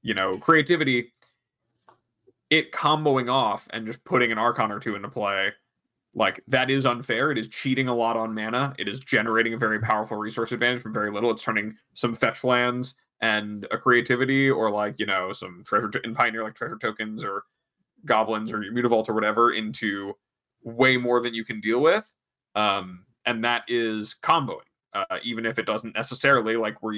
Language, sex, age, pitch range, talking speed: English, male, 20-39, 110-135 Hz, 190 wpm